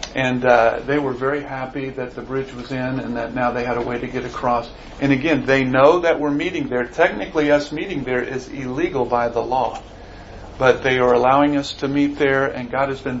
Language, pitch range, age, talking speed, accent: English, 125-145 Hz, 50-69, 225 wpm, American